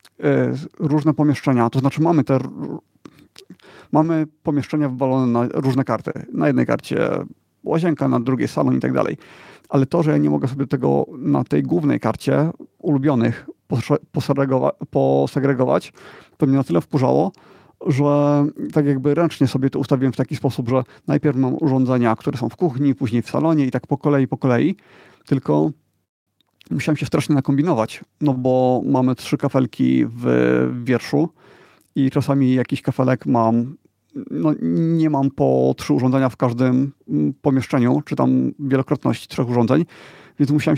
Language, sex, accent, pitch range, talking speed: Polish, male, native, 125-145 Hz, 150 wpm